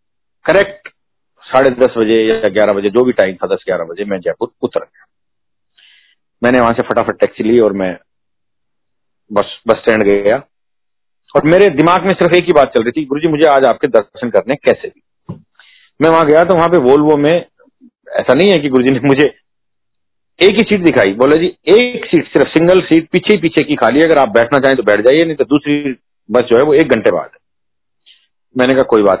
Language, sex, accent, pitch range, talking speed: Hindi, male, native, 105-150 Hz, 205 wpm